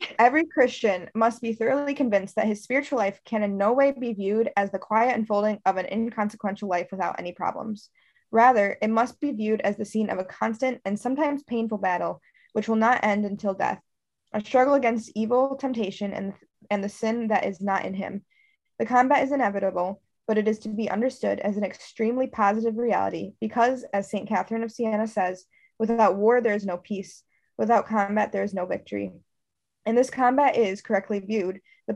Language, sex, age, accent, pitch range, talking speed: English, female, 20-39, American, 195-230 Hz, 195 wpm